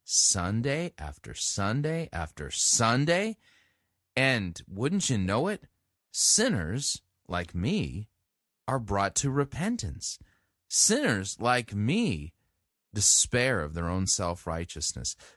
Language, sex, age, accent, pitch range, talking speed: English, male, 30-49, American, 90-135 Hz, 100 wpm